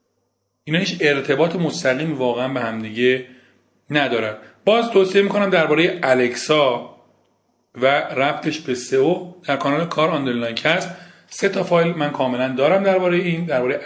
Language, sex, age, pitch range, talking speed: Persian, male, 40-59, 125-160 Hz, 140 wpm